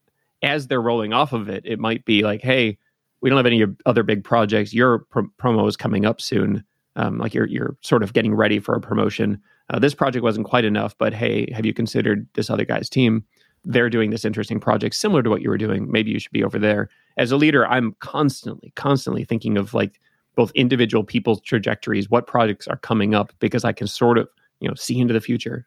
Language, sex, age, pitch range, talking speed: English, male, 30-49, 105-125 Hz, 225 wpm